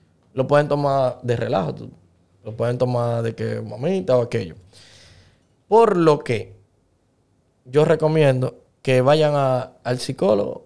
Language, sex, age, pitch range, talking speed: Spanish, male, 20-39, 115-140 Hz, 125 wpm